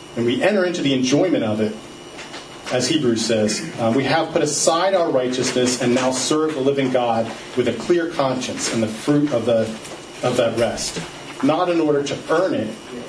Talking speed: 195 wpm